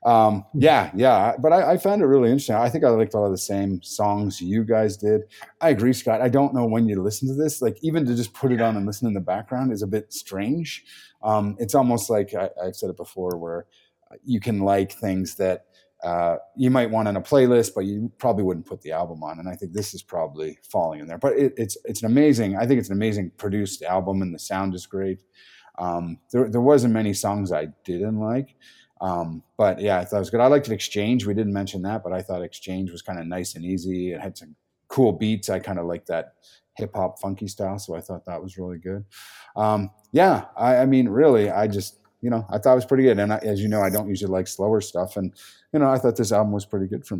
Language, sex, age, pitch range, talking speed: English, male, 30-49, 95-120 Hz, 250 wpm